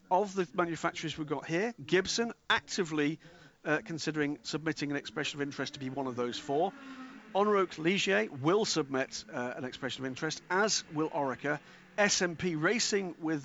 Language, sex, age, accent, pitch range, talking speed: English, male, 50-69, British, 135-180 Hz, 160 wpm